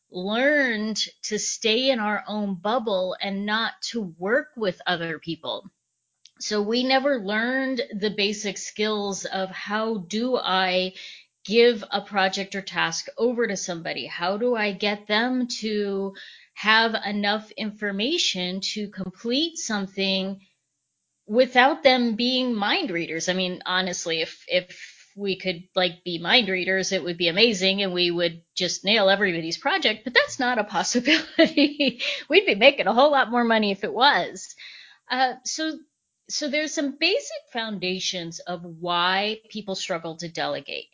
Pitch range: 185-245 Hz